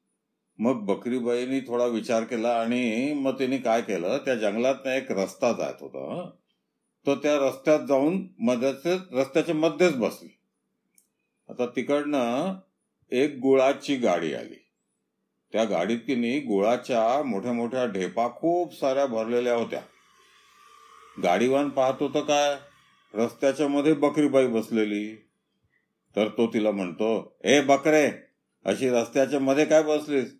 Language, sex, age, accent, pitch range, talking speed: Marathi, male, 50-69, native, 115-145 Hz, 75 wpm